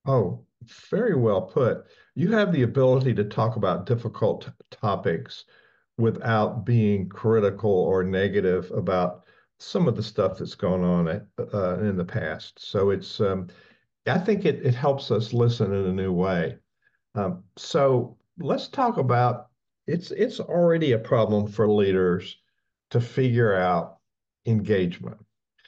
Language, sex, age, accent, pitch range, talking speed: English, male, 50-69, American, 100-120 Hz, 145 wpm